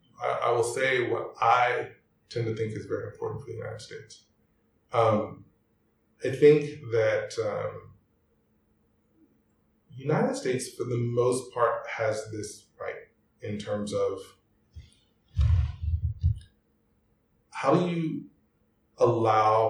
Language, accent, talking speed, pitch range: English, American, 110 wpm, 105-160 Hz